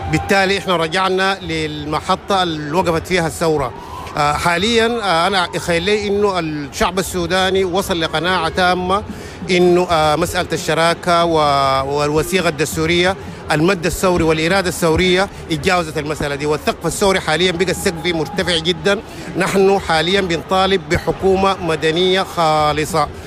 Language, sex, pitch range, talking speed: Arabic, male, 150-185 Hz, 115 wpm